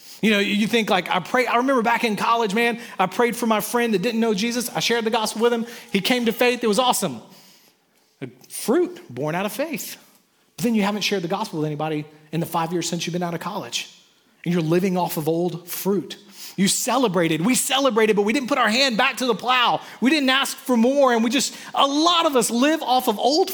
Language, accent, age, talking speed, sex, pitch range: English, American, 30-49, 245 wpm, male, 190-255 Hz